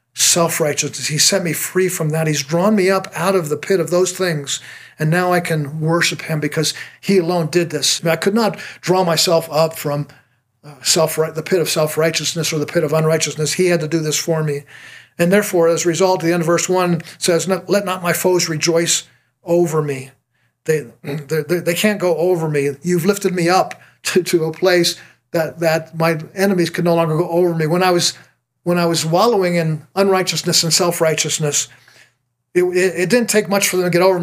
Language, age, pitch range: English, 50-69, 155-180 Hz